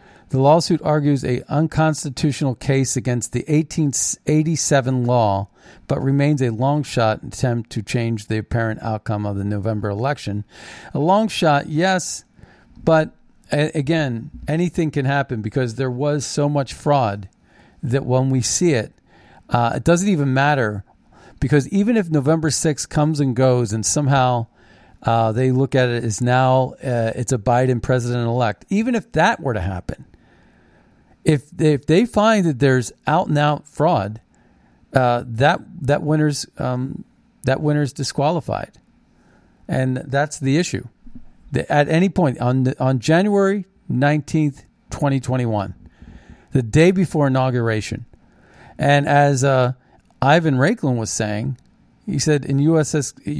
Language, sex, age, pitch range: English, male, 40-59, 120-155 Hz